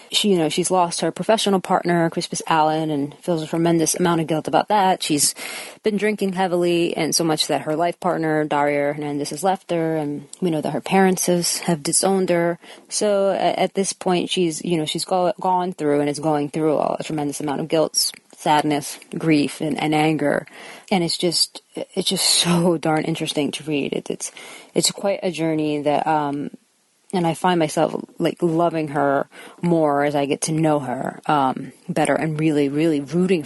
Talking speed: 195 wpm